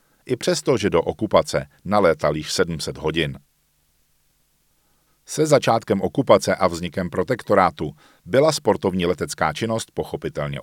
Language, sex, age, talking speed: Czech, male, 40-59, 115 wpm